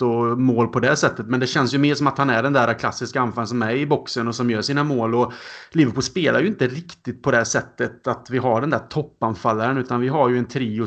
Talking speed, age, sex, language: 265 wpm, 30-49, male, Swedish